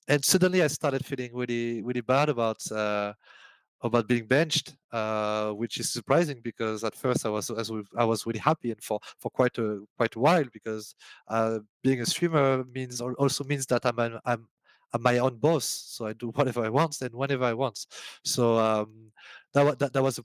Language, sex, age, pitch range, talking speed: English, male, 30-49, 115-135 Hz, 200 wpm